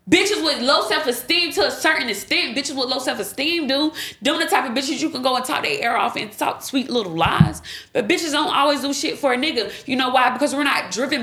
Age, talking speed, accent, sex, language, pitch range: 20-39, 250 wpm, American, female, English, 245-300 Hz